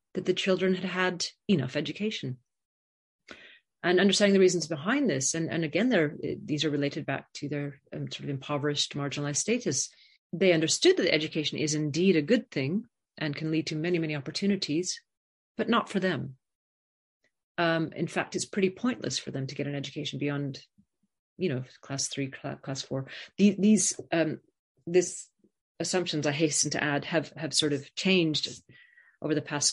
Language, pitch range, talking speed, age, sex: English, 140-185 Hz, 170 wpm, 30-49, female